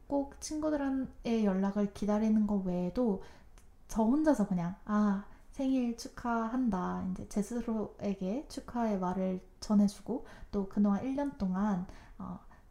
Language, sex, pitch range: Korean, female, 195-235 Hz